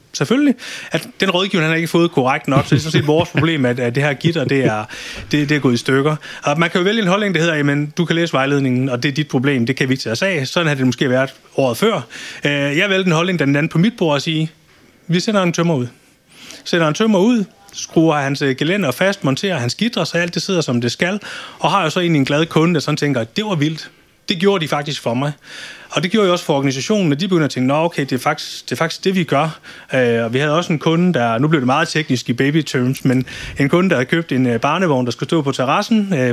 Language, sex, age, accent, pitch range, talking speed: Danish, male, 30-49, native, 135-175 Hz, 270 wpm